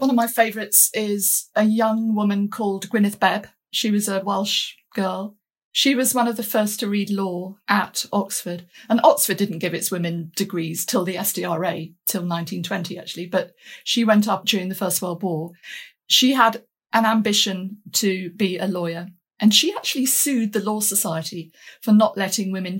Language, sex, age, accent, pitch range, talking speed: English, female, 50-69, British, 180-215 Hz, 180 wpm